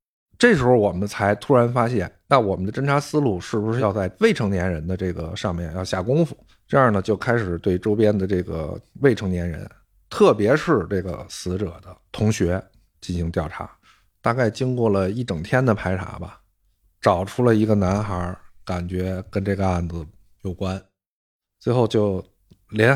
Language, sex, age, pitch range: Chinese, male, 50-69, 95-135 Hz